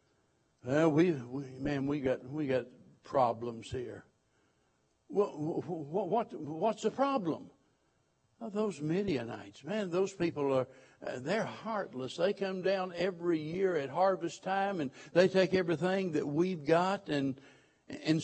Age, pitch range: 60-79, 150-215 Hz